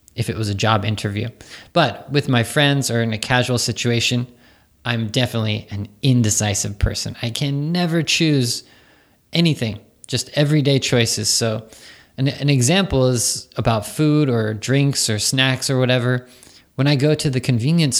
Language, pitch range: Japanese, 110-140 Hz